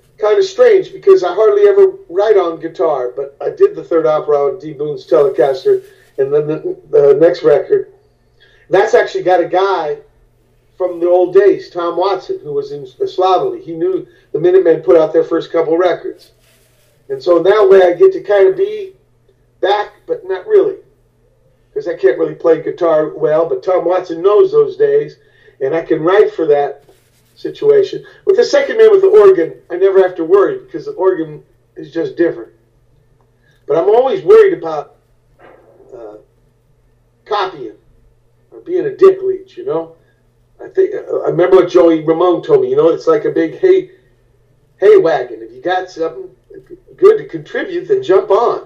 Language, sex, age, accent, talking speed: English, male, 50-69, American, 180 wpm